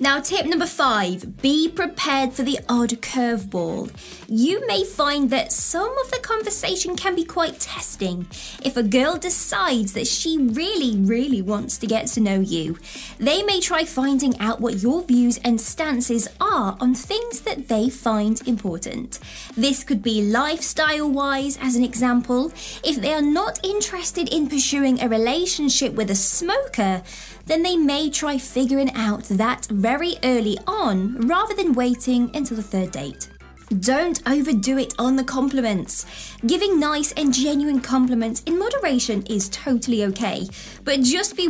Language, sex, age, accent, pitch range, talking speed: English, female, 20-39, British, 225-300 Hz, 155 wpm